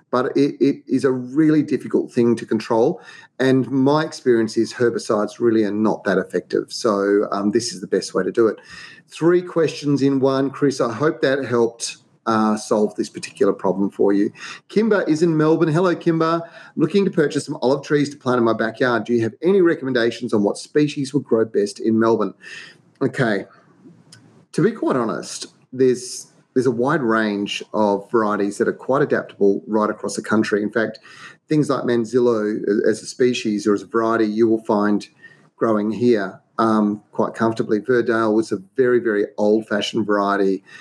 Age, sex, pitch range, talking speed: 30-49, male, 110-135 Hz, 180 wpm